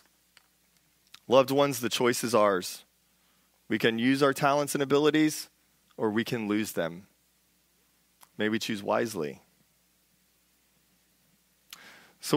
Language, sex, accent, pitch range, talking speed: English, male, American, 105-130 Hz, 110 wpm